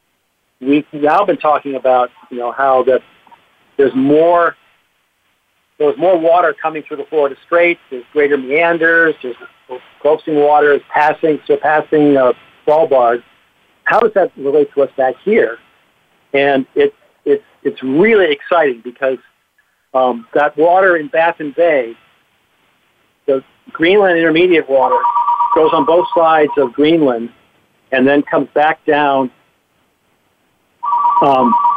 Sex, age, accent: male, 50-69, American